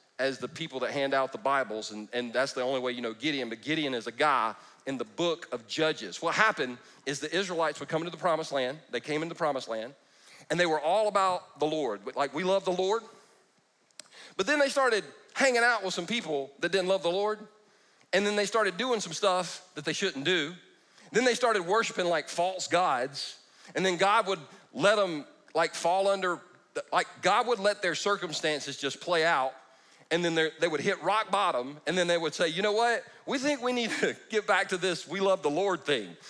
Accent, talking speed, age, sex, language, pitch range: American, 225 wpm, 40-59, male, English, 150-205 Hz